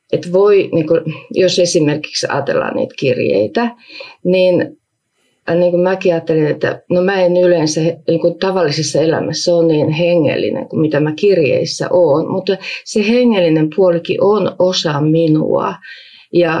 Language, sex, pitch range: Finnish, female, 170-230 Hz